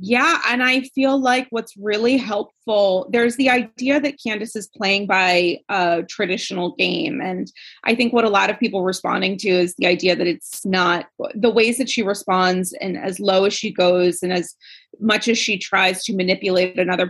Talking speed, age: 195 wpm, 30-49